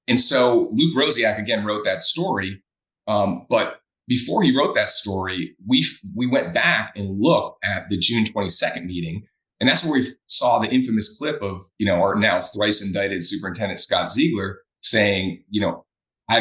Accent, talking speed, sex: American, 175 wpm, male